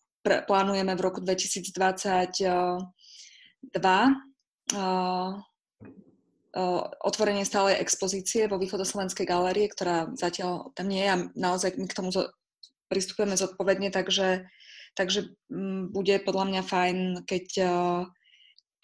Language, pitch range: Slovak, 180-200 Hz